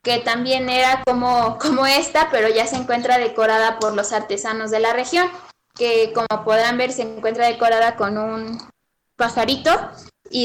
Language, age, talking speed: Spanish, 10-29, 160 wpm